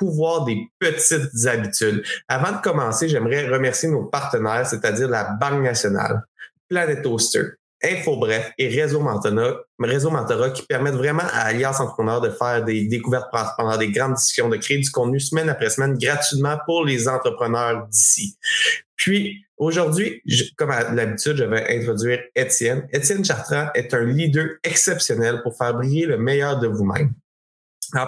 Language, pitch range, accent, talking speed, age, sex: French, 120-155 Hz, Canadian, 155 wpm, 20-39, male